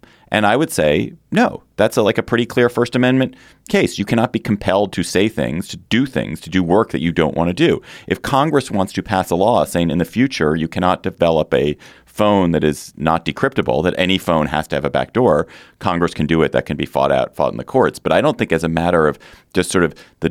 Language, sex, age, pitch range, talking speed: English, male, 30-49, 80-100 Hz, 255 wpm